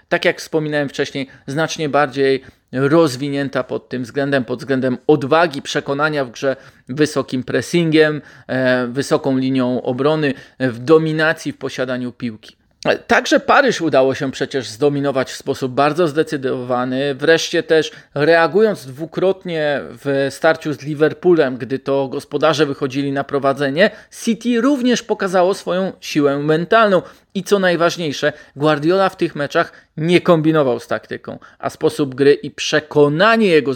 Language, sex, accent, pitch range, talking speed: Polish, male, native, 130-165 Hz, 130 wpm